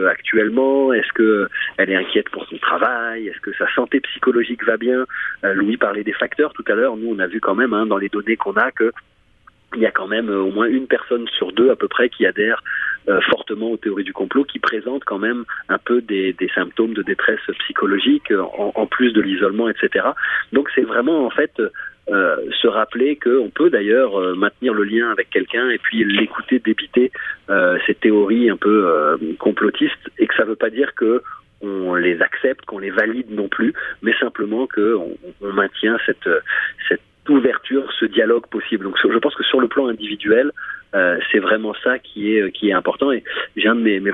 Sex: male